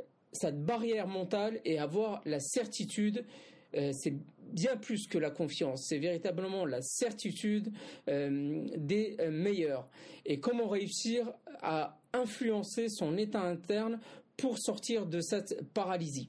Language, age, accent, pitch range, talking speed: French, 50-69, French, 150-210 Hz, 130 wpm